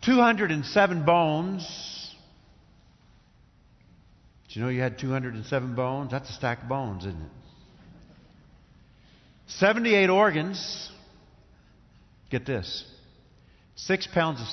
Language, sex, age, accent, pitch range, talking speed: English, male, 50-69, American, 125-170 Hz, 95 wpm